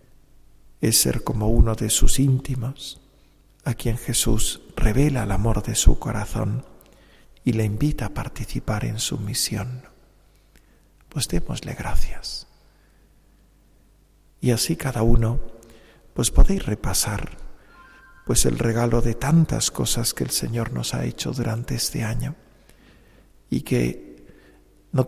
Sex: male